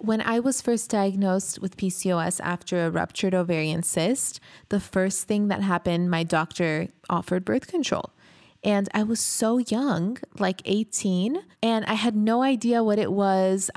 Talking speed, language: 160 wpm, English